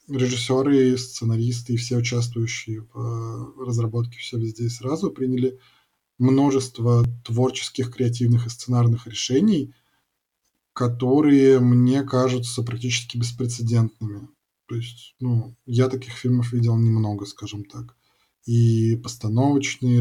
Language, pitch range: Russian, 115-130 Hz